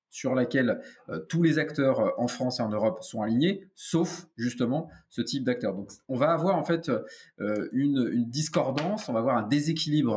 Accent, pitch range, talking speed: French, 120-165 Hz, 195 wpm